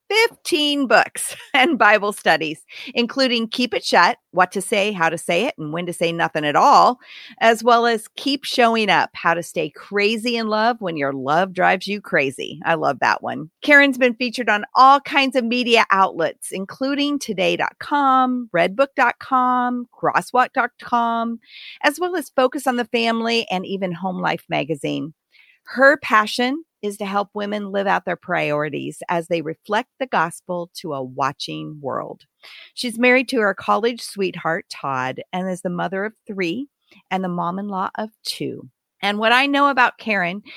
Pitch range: 175-250 Hz